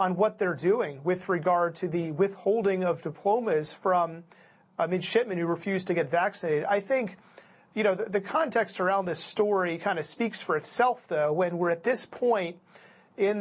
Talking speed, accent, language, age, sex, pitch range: 190 wpm, American, English, 40-59, male, 180-205 Hz